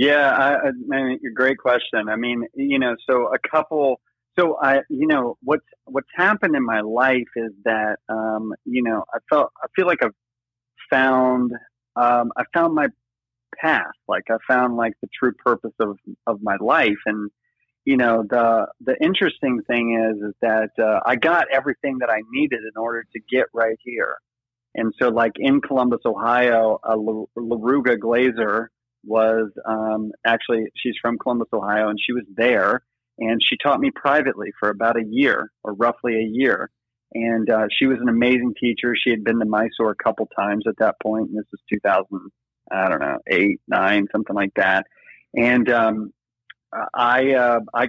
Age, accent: 30-49, American